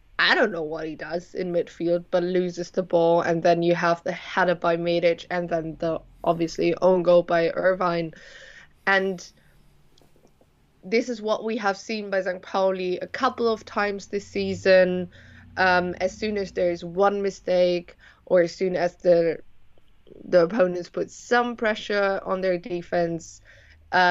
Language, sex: English, female